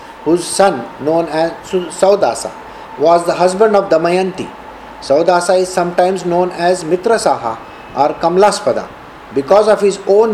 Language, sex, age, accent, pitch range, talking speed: English, male, 50-69, Indian, 165-215 Hz, 130 wpm